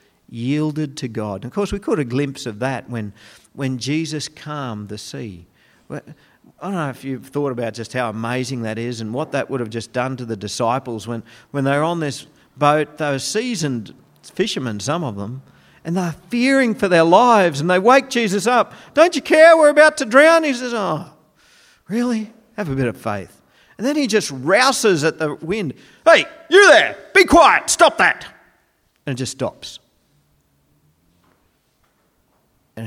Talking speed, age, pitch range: 180 wpm, 50-69, 115-165 Hz